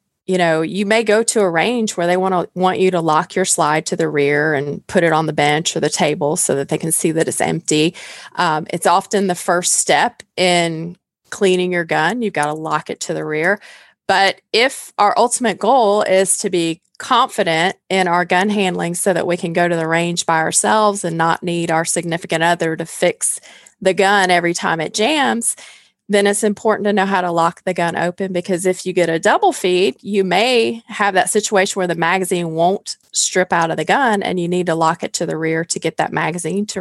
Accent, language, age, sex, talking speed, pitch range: American, English, 20-39, female, 225 wpm, 165-200 Hz